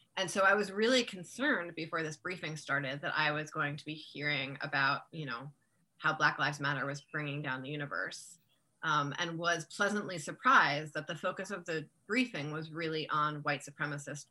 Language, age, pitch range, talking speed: English, 20-39, 145-170 Hz, 190 wpm